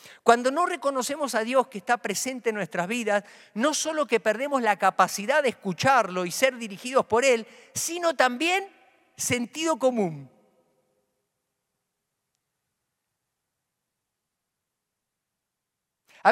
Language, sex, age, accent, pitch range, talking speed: Spanish, male, 50-69, Argentinian, 175-250 Hz, 105 wpm